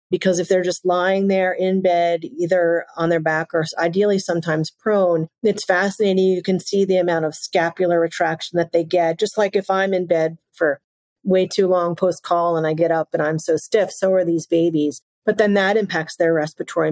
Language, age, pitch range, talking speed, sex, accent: English, 40-59, 165-195 Hz, 205 wpm, female, American